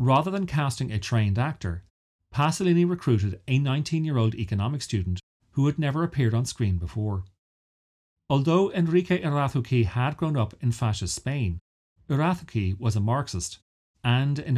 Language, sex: English, male